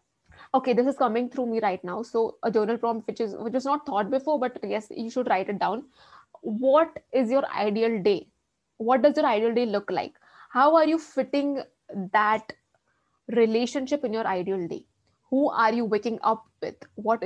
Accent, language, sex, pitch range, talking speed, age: Indian, English, female, 210-275 Hz, 190 wpm, 20-39